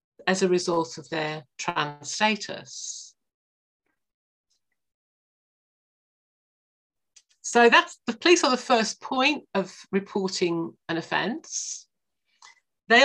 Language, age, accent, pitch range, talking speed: English, 50-69, British, 170-230 Hz, 90 wpm